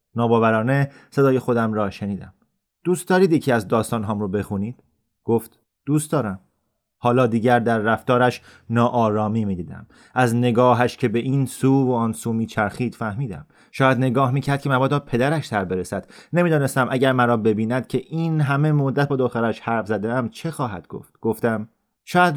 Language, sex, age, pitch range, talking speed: Persian, male, 30-49, 110-130 Hz, 165 wpm